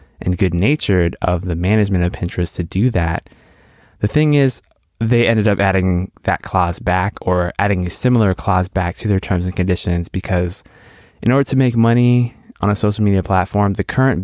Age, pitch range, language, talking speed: 20-39, 90-110 Hz, English, 185 wpm